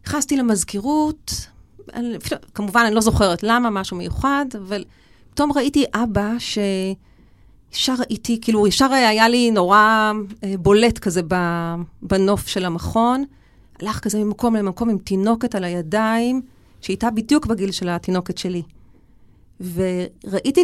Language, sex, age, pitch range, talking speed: Hebrew, female, 40-59, 180-235 Hz, 115 wpm